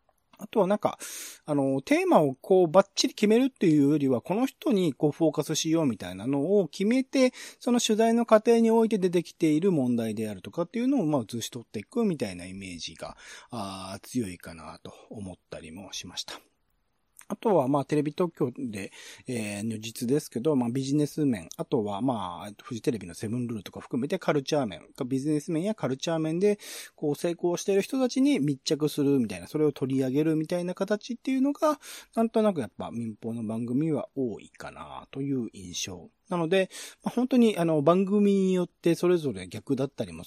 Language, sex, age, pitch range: Japanese, male, 40-59, 120-200 Hz